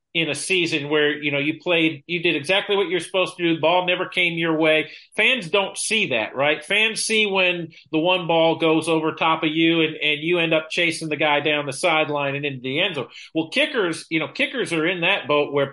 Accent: American